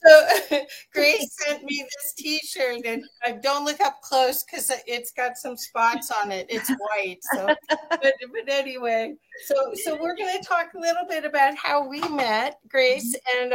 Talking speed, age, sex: 175 wpm, 50-69, female